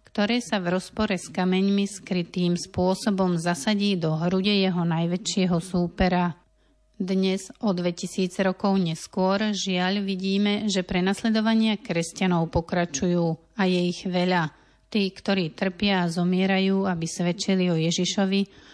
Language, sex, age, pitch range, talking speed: Slovak, female, 40-59, 175-200 Hz, 120 wpm